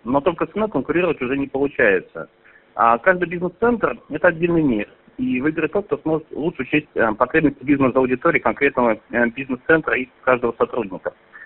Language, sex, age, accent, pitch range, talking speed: Russian, male, 40-59, native, 130-170 Hz, 145 wpm